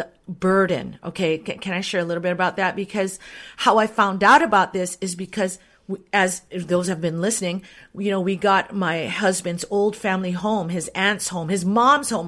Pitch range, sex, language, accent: 185-230 Hz, female, English, American